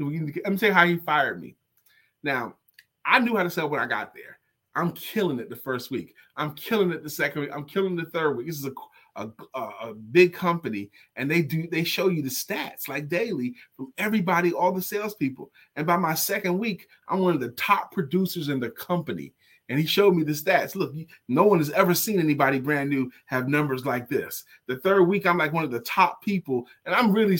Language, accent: English, American